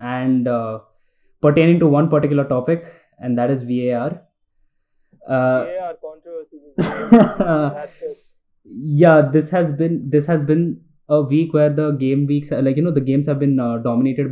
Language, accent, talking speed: English, Indian, 150 wpm